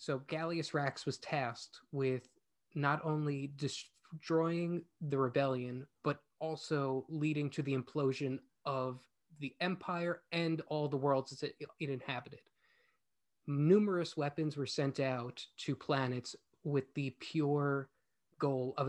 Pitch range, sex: 130-150 Hz, male